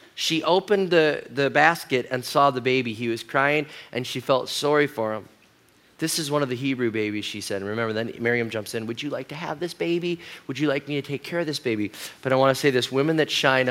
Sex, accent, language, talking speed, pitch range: male, American, English, 255 wpm, 130-165 Hz